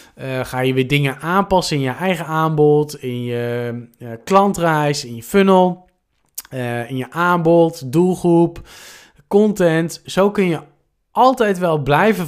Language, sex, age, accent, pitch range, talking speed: Dutch, male, 20-39, Dutch, 135-180 Hz, 140 wpm